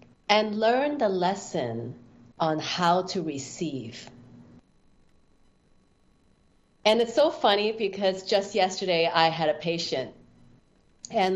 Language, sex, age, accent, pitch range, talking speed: English, female, 40-59, American, 165-225 Hz, 105 wpm